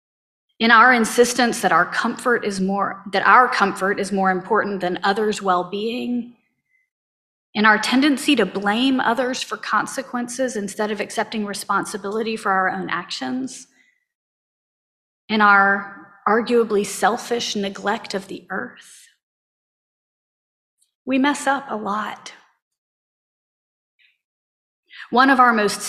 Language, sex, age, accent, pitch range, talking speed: English, female, 40-59, American, 185-235 Hz, 115 wpm